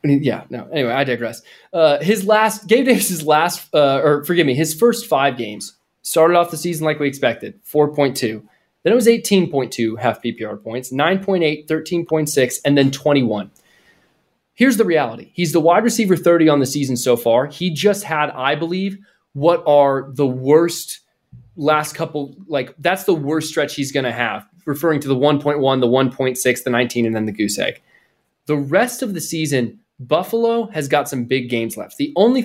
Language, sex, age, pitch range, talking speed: English, male, 20-39, 140-195 Hz, 185 wpm